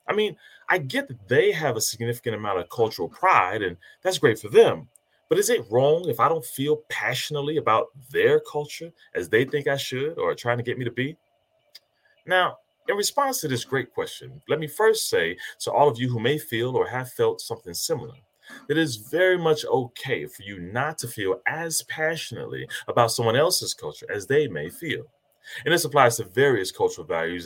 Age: 30-49